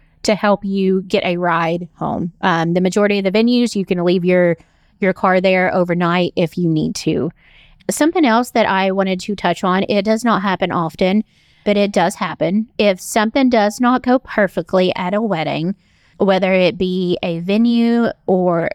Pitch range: 180-210 Hz